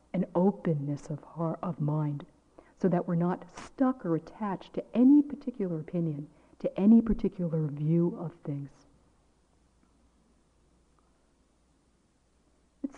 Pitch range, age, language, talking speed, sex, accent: 155-185 Hz, 50-69, English, 110 wpm, female, American